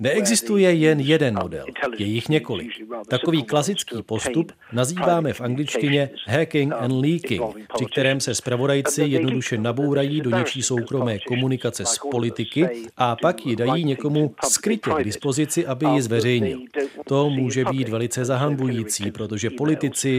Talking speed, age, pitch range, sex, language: 135 wpm, 40-59, 120-150 Hz, male, Czech